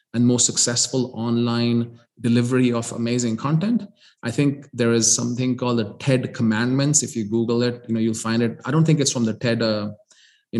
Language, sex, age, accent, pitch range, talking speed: English, male, 30-49, Indian, 115-125 Hz, 200 wpm